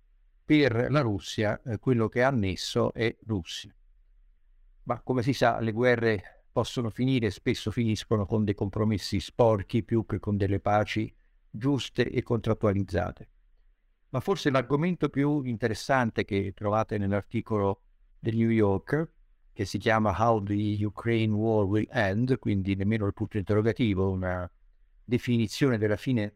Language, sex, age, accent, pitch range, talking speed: Italian, male, 60-79, native, 105-130 Hz, 135 wpm